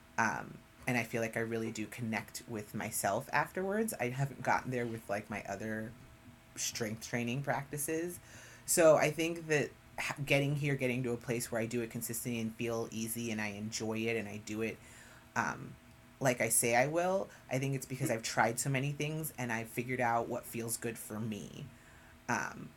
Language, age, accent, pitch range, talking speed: English, 30-49, American, 115-135 Hz, 200 wpm